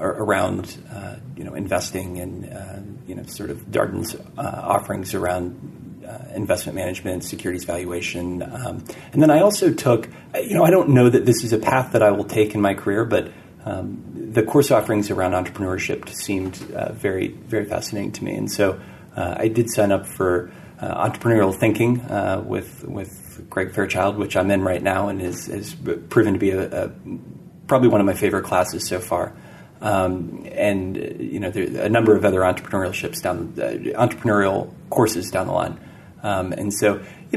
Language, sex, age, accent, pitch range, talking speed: English, male, 40-59, American, 95-115 Hz, 190 wpm